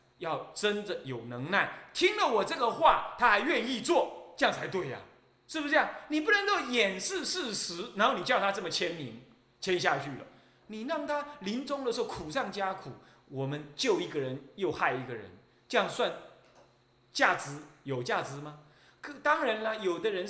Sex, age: male, 30-49